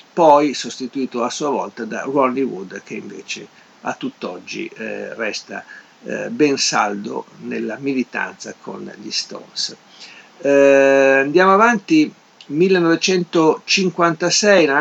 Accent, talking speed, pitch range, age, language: native, 105 wpm, 130-155 Hz, 50-69, Italian